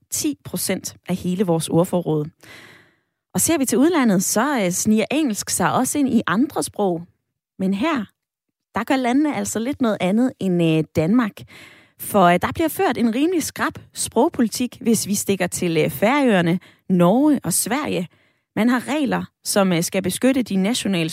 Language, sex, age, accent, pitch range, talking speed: Danish, female, 20-39, native, 185-255 Hz, 155 wpm